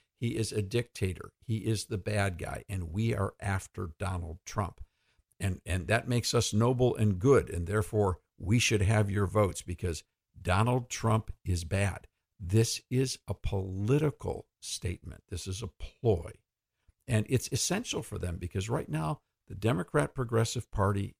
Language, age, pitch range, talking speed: English, 50-69, 90-110 Hz, 160 wpm